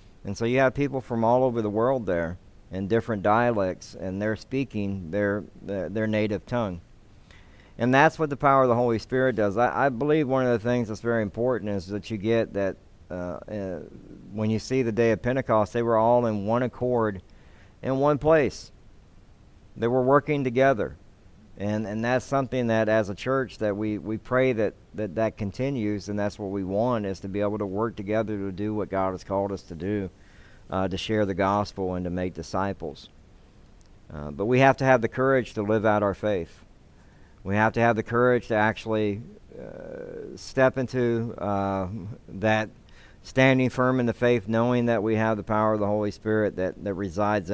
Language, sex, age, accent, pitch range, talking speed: English, male, 50-69, American, 100-120 Hz, 200 wpm